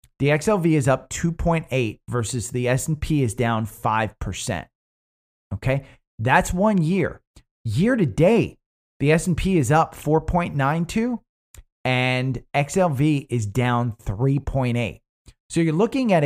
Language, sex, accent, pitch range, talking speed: English, male, American, 105-155 Hz, 120 wpm